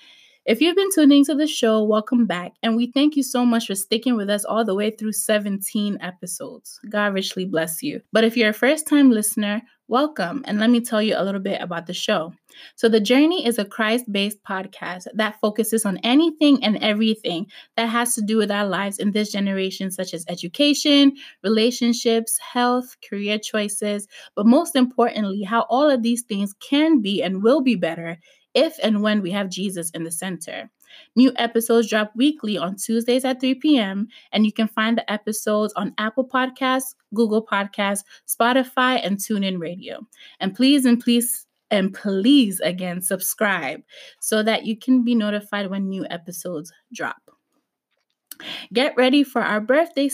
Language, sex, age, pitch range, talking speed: English, female, 20-39, 200-255 Hz, 175 wpm